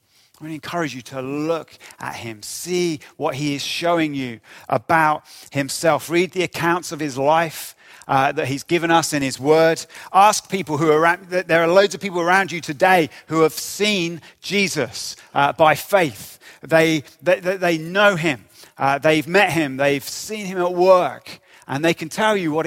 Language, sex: English, male